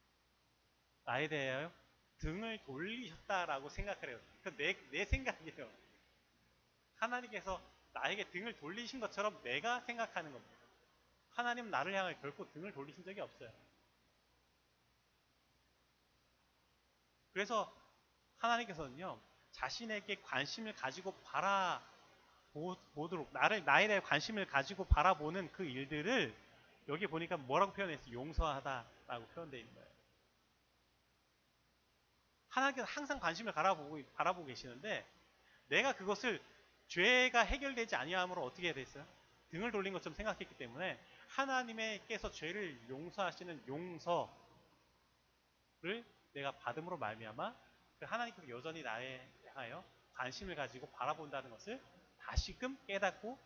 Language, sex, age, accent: Korean, male, 30-49, native